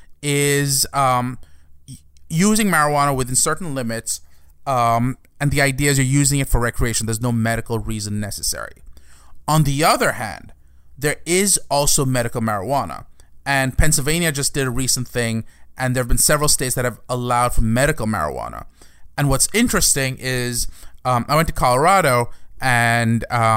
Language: English